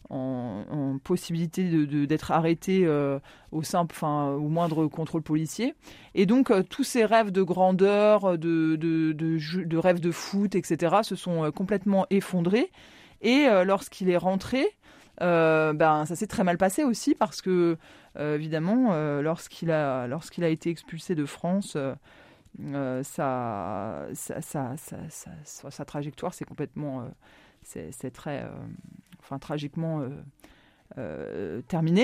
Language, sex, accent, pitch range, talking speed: French, female, French, 160-200 Hz, 155 wpm